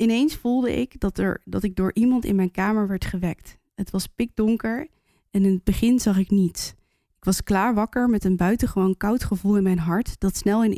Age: 20-39